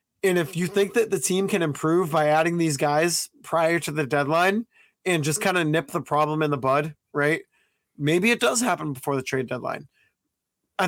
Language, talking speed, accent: English, 205 wpm, American